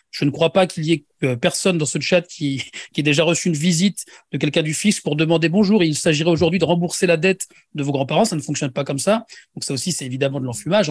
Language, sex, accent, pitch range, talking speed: French, male, French, 150-195 Hz, 265 wpm